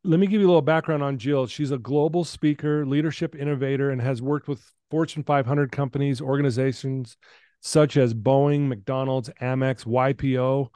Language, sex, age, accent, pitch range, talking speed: English, male, 30-49, American, 130-150 Hz, 160 wpm